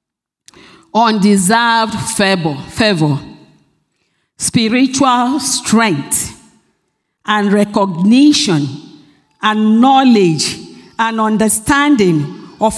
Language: English